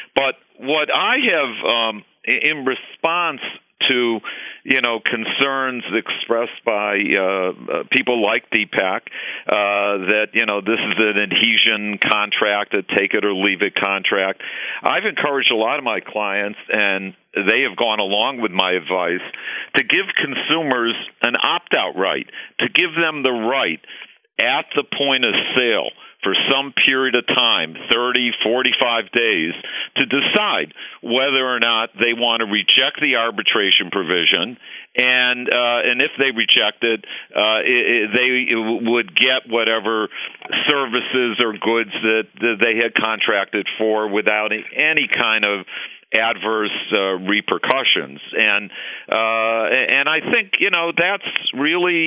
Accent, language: American, English